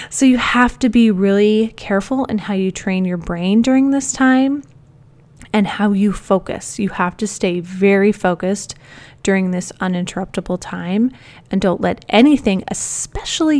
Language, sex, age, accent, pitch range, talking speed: English, female, 20-39, American, 185-250 Hz, 155 wpm